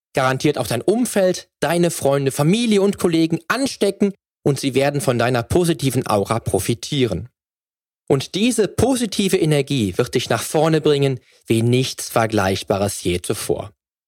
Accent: German